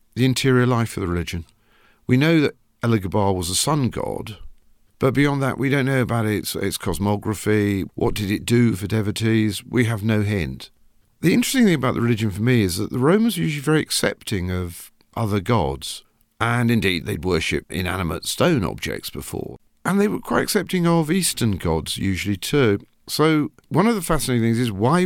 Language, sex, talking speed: English, male, 190 wpm